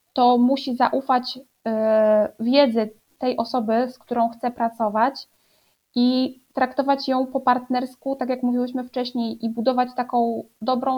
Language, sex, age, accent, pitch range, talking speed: Polish, female, 20-39, native, 230-260 Hz, 125 wpm